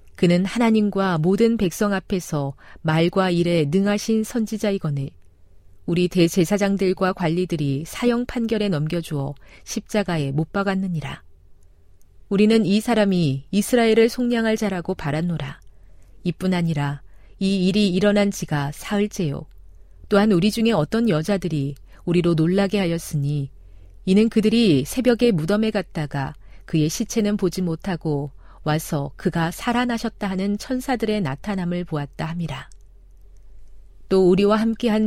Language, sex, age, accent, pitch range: Korean, female, 40-59, native, 145-205 Hz